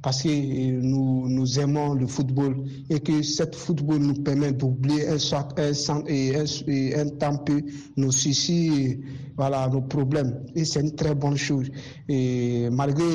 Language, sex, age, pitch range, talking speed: French, male, 50-69, 130-145 Hz, 160 wpm